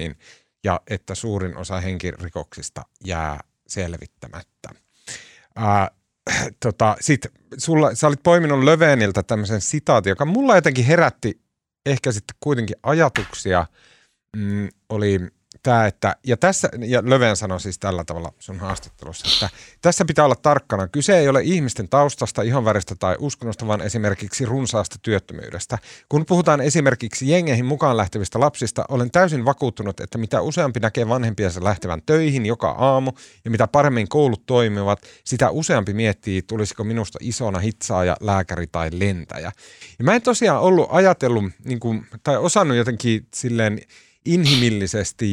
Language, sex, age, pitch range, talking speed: Finnish, male, 30-49, 95-130 Hz, 135 wpm